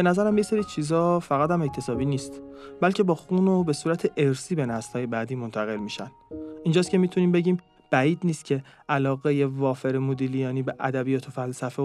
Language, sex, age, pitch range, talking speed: Persian, male, 30-49, 130-170 Hz, 175 wpm